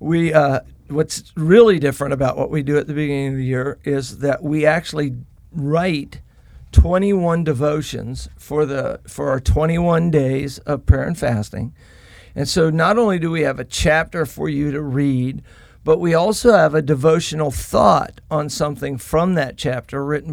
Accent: American